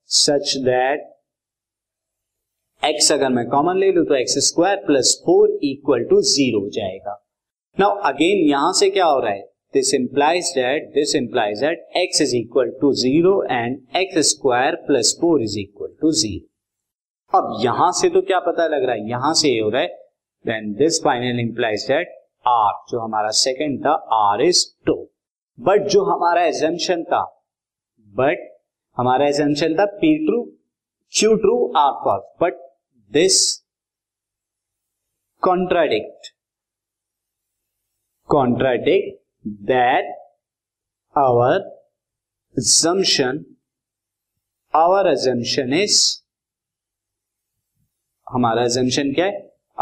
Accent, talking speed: native, 100 wpm